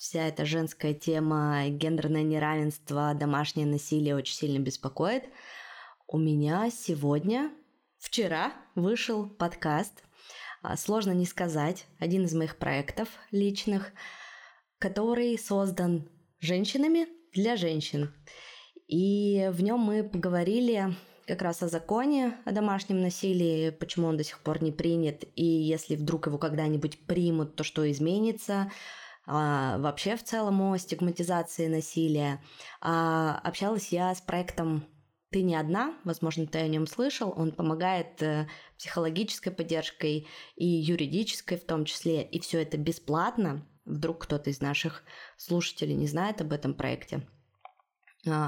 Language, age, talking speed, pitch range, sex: Russian, 20-39, 130 wpm, 155-195 Hz, female